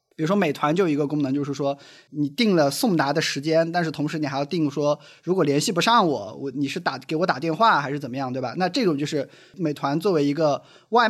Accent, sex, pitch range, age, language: native, male, 140-165 Hz, 20-39, Chinese